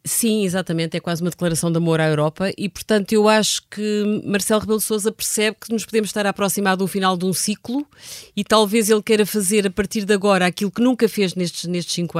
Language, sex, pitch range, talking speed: Portuguese, female, 165-200 Hz, 225 wpm